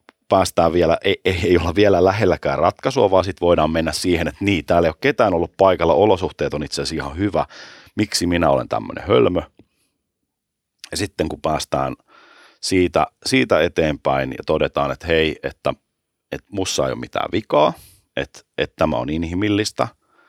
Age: 30-49